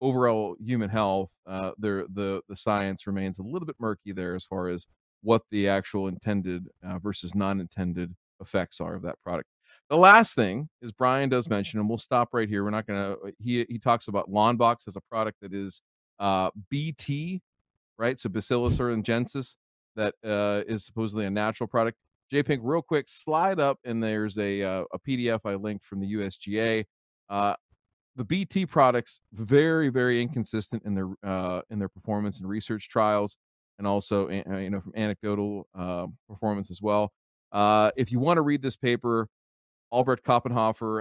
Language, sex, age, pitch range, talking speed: English, male, 40-59, 100-120 Hz, 175 wpm